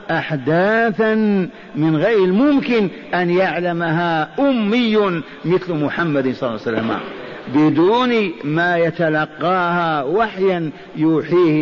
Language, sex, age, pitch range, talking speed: Arabic, male, 50-69, 155-195 Hz, 95 wpm